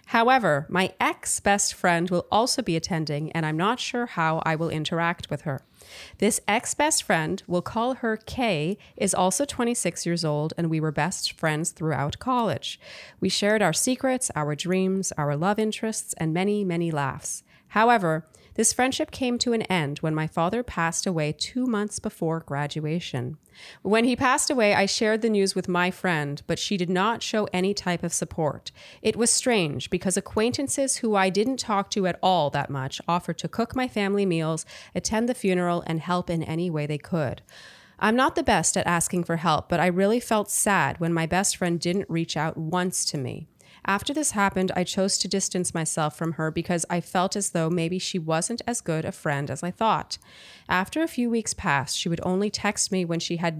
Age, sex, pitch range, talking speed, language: 30-49, female, 165-215 Hz, 200 wpm, English